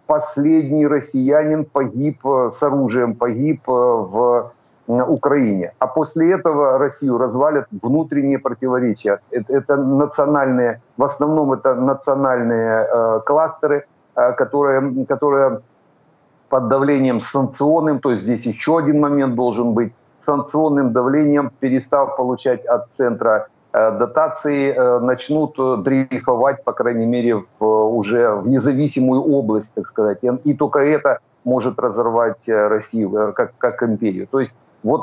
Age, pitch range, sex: 50-69, 120-145 Hz, male